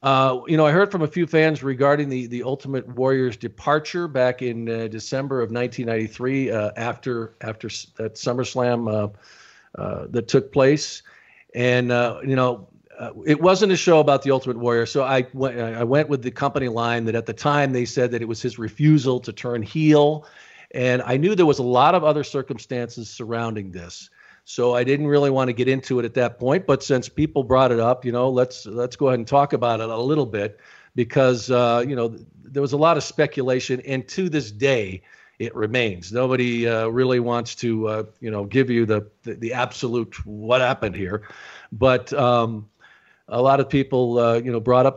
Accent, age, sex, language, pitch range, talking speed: American, 50-69, male, English, 110-135 Hz, 205 wpm